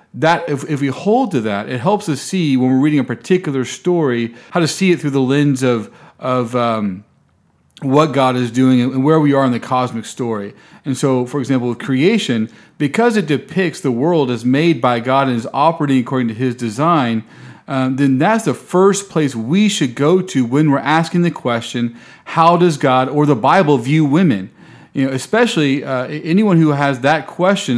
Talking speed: 200 wpm